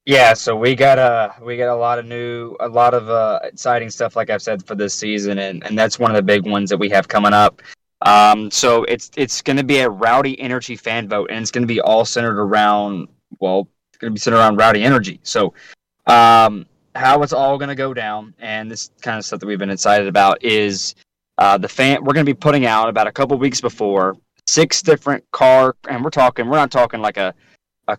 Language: English